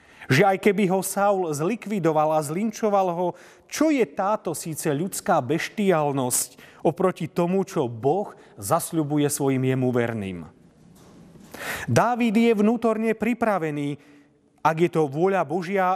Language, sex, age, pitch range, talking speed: Slovak, male, 40-59, 150-205 Hz, 120 wpm